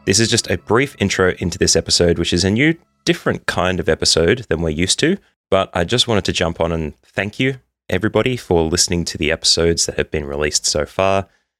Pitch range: 85-105 Hz